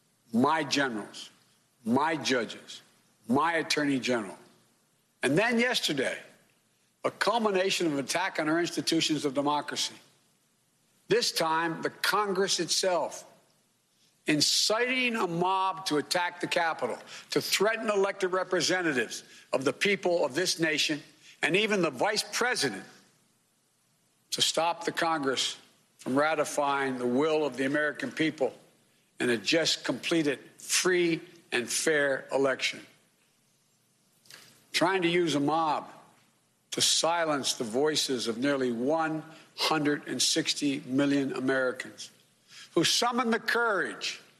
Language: English